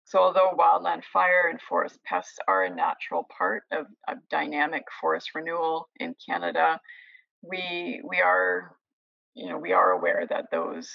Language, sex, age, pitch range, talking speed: English, female, 30-49, 175-260 Hz, 155 wpm